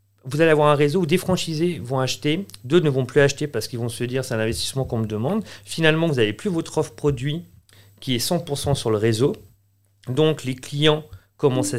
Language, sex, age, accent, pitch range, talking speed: French, male, 40-59, French, 110-150 Hz, 220 wpm